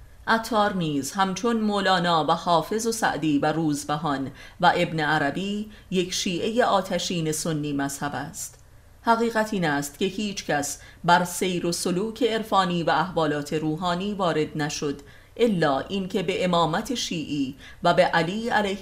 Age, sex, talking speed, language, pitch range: 30-49, female, 135 wpm, Persian, 145-195 Hz